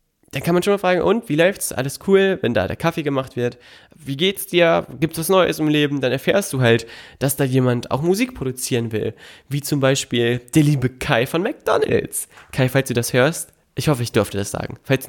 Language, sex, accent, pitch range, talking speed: German, male, German, 130-170 Hz, 225 wpm